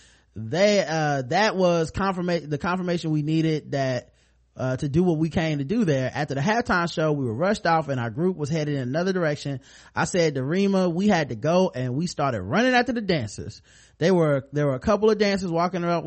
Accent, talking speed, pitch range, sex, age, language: American, 225 wpm, 135-170 Hz, male, 30-49, English